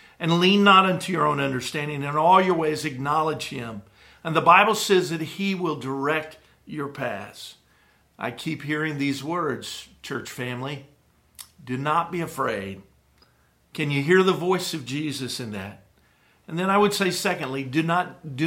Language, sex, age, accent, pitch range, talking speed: English, male, 50-69, American, 140-180 Hz, 165 wpm